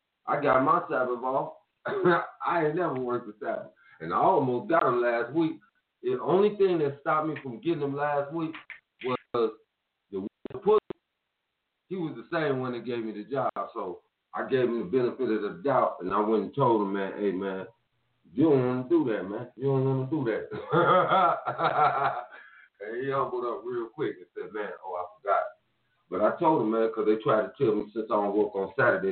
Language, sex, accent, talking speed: English, male, American, 205 wpm